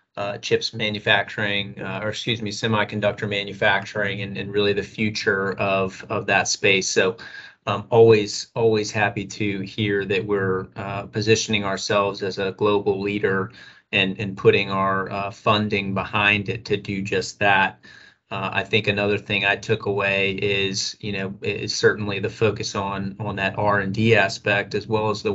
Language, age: English, 30-49